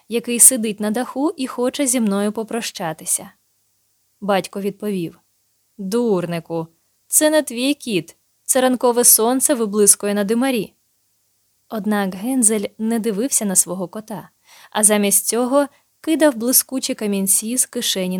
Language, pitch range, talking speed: Ukrainian, 190-245 Hz, 120 wpm